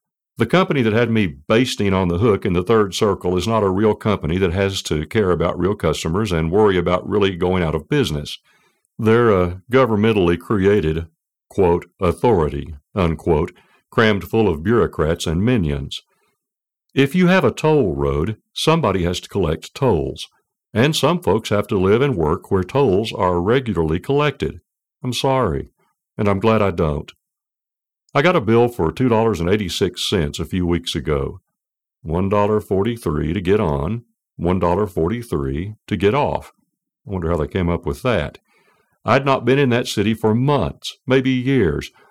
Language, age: English, 60-79